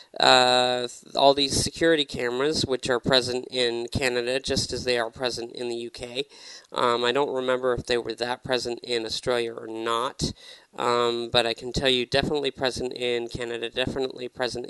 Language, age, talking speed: English, 40-59, 175 wpm